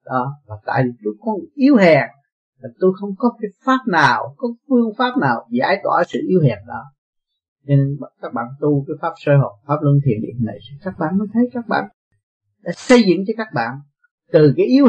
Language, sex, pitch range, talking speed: Vietnamese, male, 130-185 Hz, 200 wpm